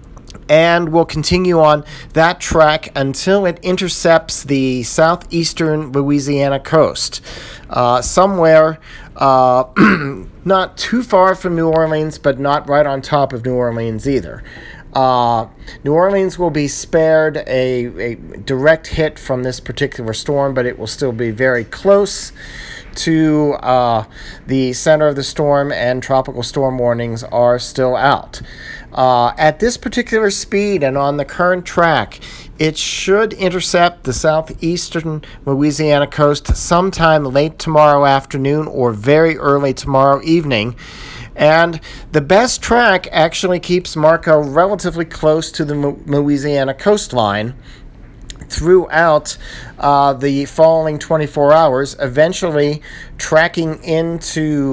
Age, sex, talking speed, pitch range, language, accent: 40-59, male, 125 wpm, 130-165 Hz, English, American